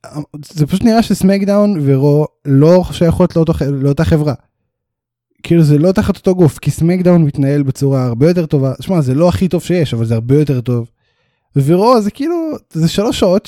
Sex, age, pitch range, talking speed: male, 10-29, 140-205 Hz, 180 wpm